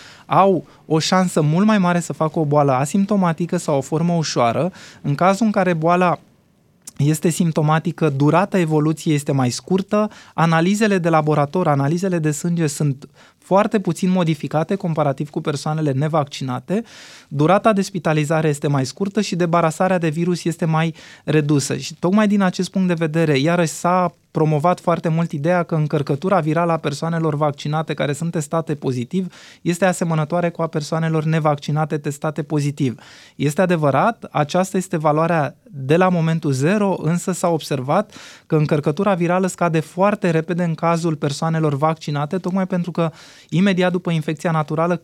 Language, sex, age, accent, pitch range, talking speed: Romanian, male, 20-39, native, 155-185 Hz, 150 wpm